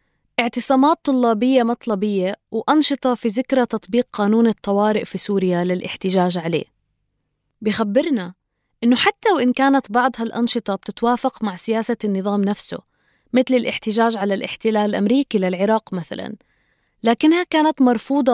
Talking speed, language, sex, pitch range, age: 115 wpm, Arabic, female, 205-260 Hz, 20-39